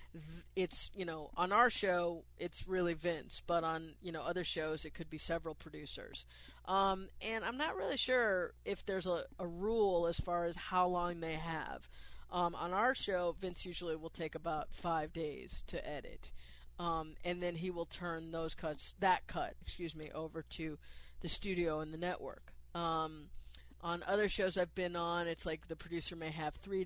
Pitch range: 155-175 Hz